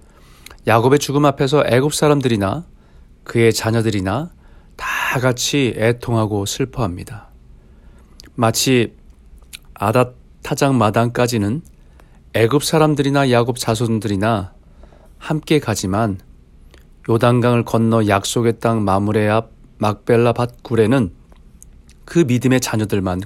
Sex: male